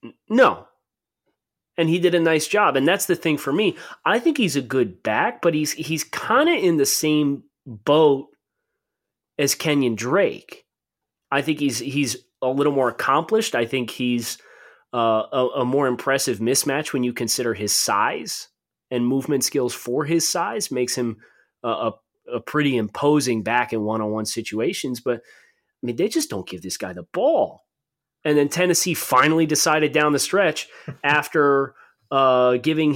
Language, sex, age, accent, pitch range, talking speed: English, male, 30-49, American, 125-165 Hz, 170 wpm